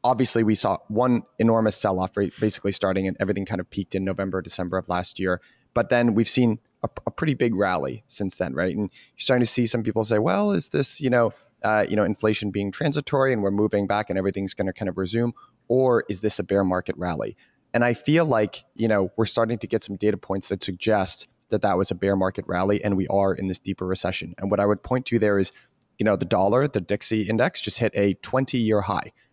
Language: English